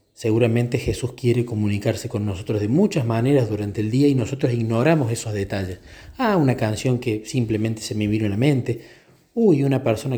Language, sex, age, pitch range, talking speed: Spanish, male, 40-59, 105-140 Hz, 185 wpm